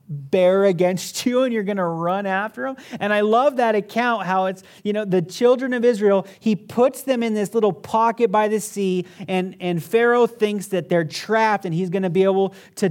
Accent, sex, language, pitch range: American, male, English, 165-225 Hz